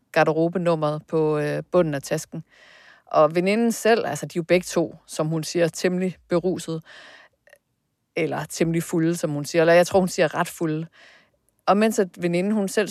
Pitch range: 165-195 Hz